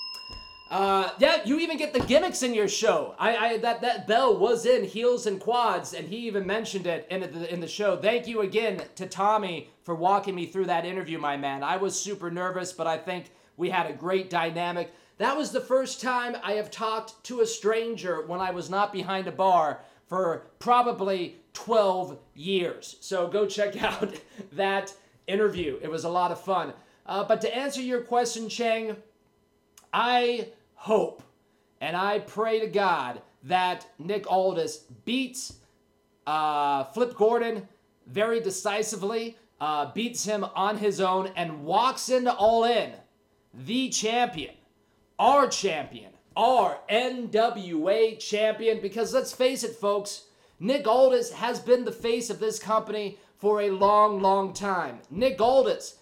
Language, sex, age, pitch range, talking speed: English, male, 30-49, 185-230 Hz, 160 wpm